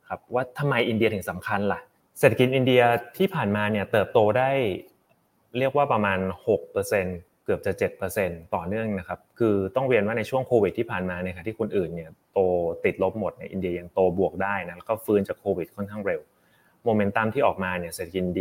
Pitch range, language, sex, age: 95-120 Hz, English, male, 20-39